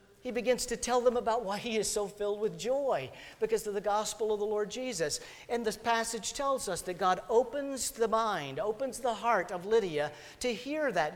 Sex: male